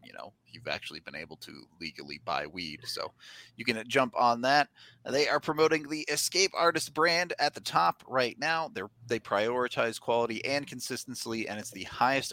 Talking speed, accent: 185 wpm, American